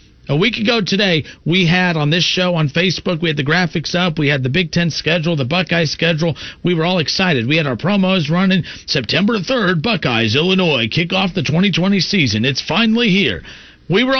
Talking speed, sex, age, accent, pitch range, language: 205 wpm, male, 40-59, American, 140-195 Hz, English